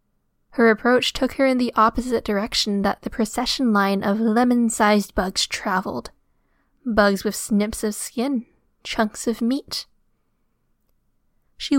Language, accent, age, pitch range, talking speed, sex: English, American, 10-29, 210-250 Hz, 125 wpm, female